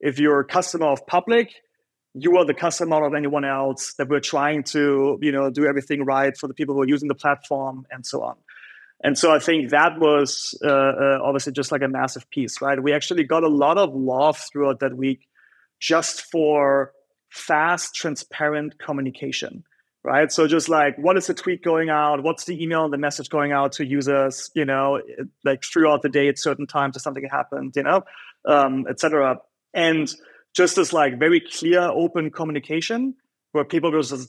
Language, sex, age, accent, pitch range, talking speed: English, male, 30-49, German, 140-160 Hz, 195 wpm